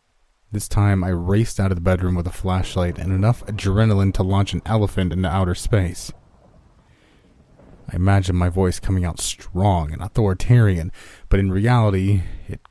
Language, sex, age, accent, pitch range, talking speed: English, male, 30-49, American, 85-100 Hz, 160 wpm